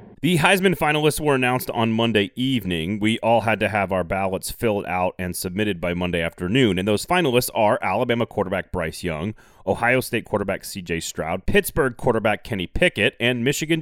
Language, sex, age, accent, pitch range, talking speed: English, male, 30-49, American, 95-130 Hz, 180 wpm